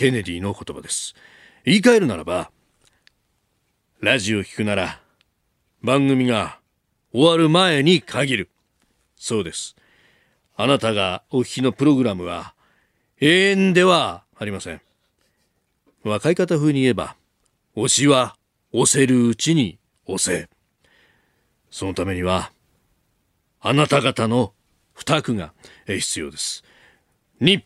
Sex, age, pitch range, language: male, 40-59, 100-150 Hz, Japanese